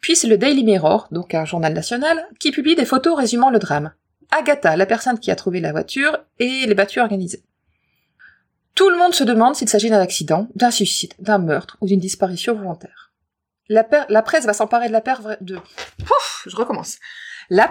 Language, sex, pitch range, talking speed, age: French, female, 190-265 Hz, 200 wpm, 30-49